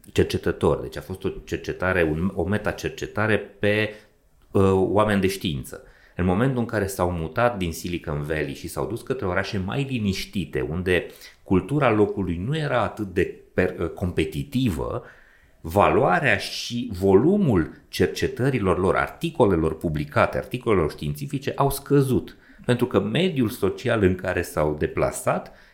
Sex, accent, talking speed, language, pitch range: male, native, 140 wpm, Romanian, 85-130 Hz